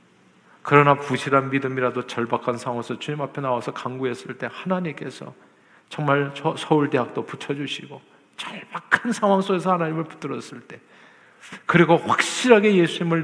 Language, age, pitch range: Korean, 50-69, 140-200 Hz